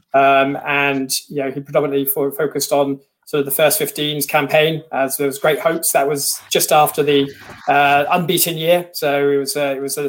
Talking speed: 220 wpm